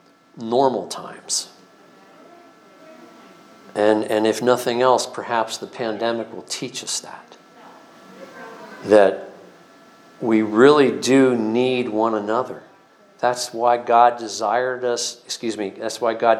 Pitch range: 110-130 Hz